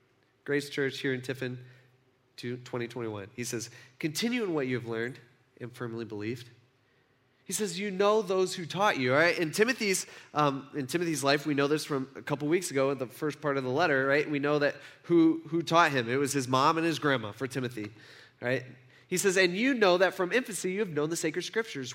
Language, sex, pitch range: English, male, 135-220 Hz